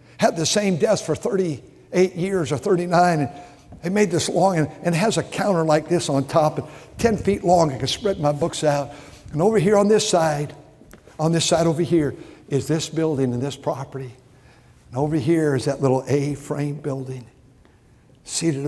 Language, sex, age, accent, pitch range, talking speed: English, male, 60-79, American, 135-190 Hz, 190 wpm